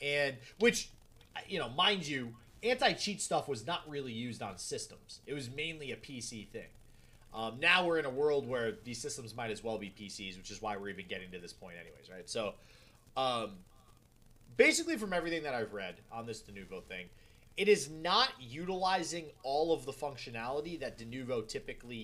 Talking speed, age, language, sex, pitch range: 185 wpm, 30-49, English, male, 110-165 Hz